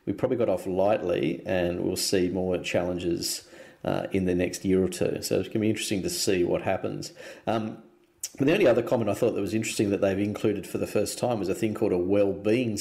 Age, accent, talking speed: 40-59, Australian, 230 wpm